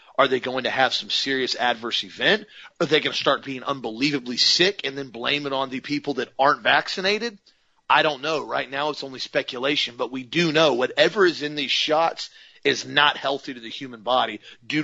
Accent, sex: American, male